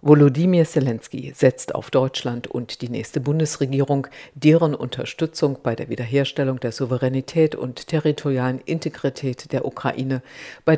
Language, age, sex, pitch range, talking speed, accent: German, 50-69, female, 130-155 Hz, 125 wpm, German